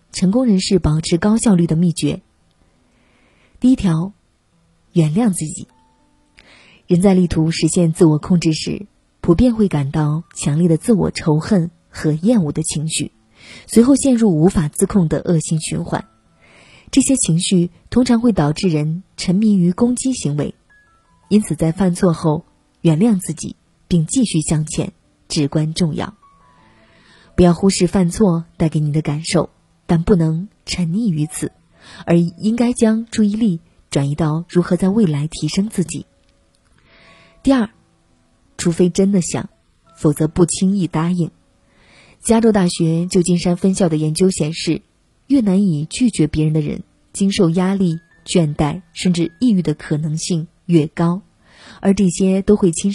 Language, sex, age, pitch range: Chinese, female, 20-39, 155-195 Hz